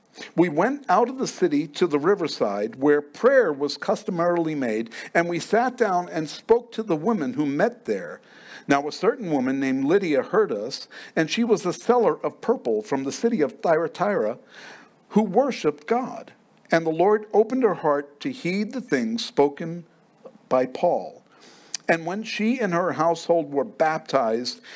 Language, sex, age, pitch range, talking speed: English, male, 50-69, 145-230 Hz, 170 wpm